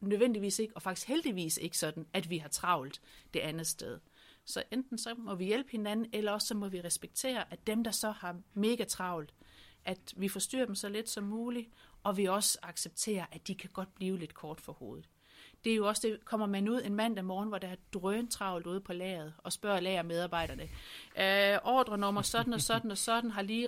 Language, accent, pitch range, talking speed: Danish, native, 180-225 Hz, 220 wpm